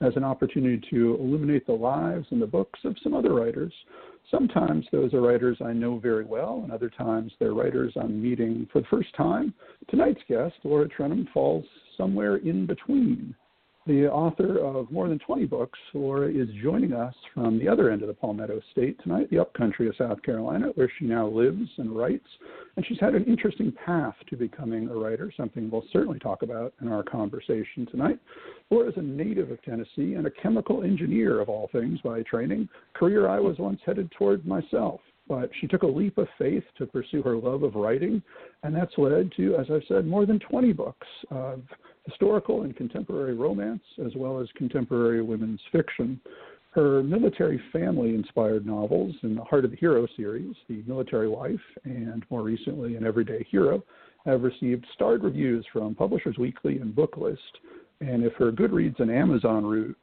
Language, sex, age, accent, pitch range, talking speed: English, male, 50-69, American, 110-145 Hz, 185 wpm